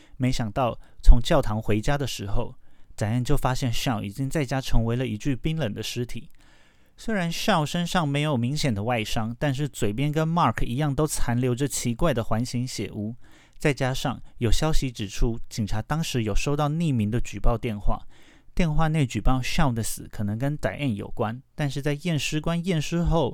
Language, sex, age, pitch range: Chinese, male, 30-49, 115-150 Hz